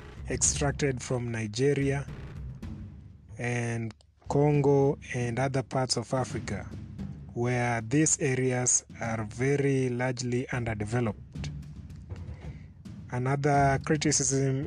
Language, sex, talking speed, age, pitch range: English, male, 80 wpm, 30-49, 105-140 Hz